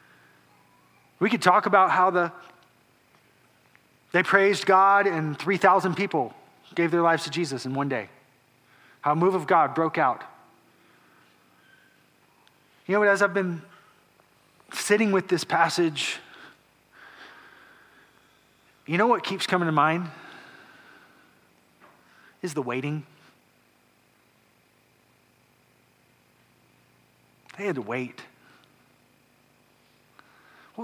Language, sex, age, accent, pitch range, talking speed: English, male, 30-49, American, 125-195 Hz, 100 wpm